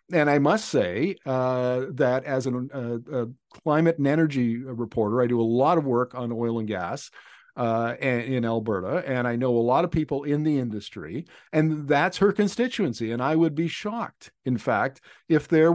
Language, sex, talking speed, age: English, male, 185 wpm, 50-69